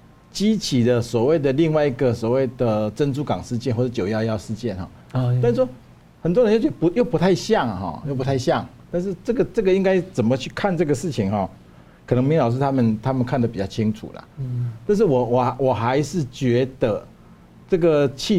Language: Chinese